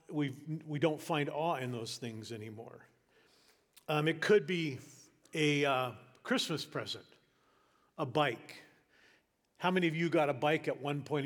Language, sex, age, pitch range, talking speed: English, male, 50-69, 135-170 Hz, 155 wpm